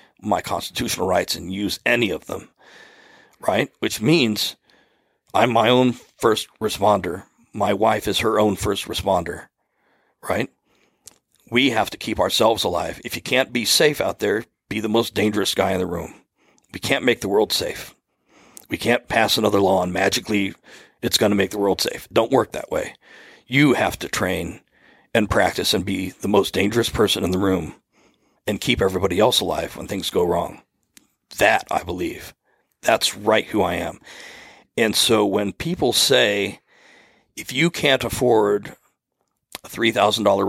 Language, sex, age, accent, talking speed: English, male, 40-59, American, 165 wpm